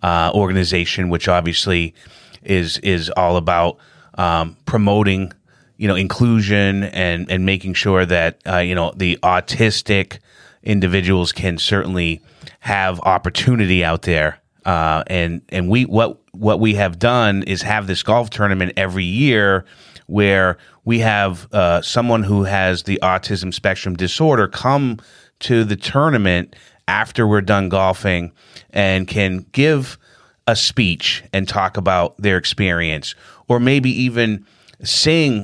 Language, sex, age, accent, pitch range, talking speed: English, male, 30-49, American, 95-120 Hz, 135 wpm